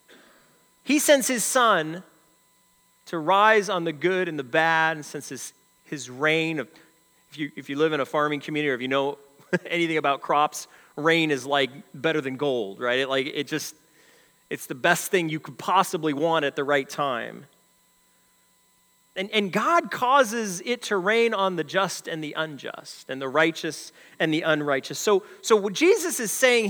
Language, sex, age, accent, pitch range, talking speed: English, male, 30-49, American, 150-205 Hz, 180 wpm